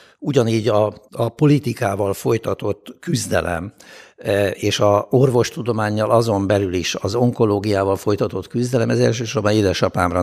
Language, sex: Hungarian, male